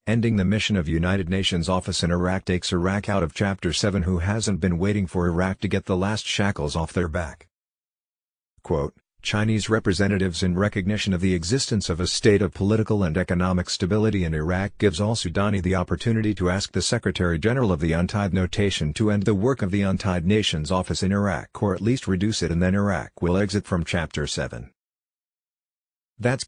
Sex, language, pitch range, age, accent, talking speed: male, English, 90-105 Hz, 50-69, American, 195 wpm